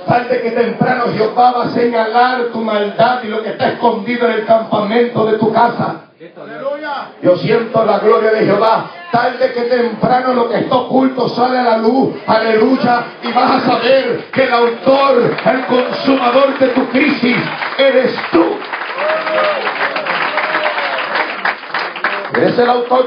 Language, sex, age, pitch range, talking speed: Italian, male, 60-79, 205-250 Hz, 150 wpm